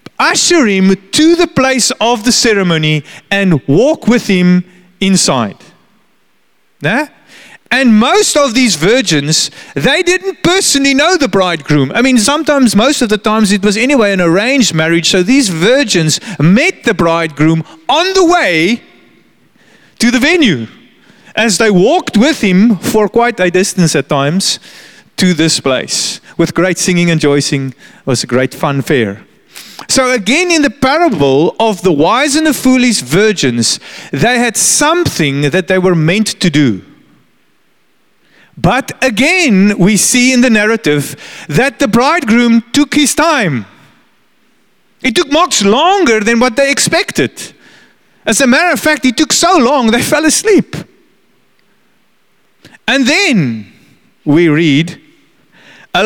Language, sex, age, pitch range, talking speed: English, male, 30-49, 175-275 Hz, 145 wpm